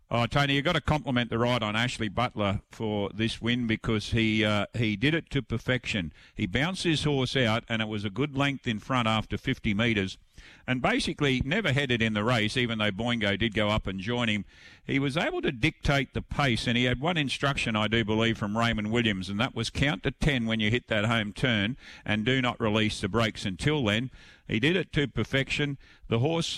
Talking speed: 220 wpm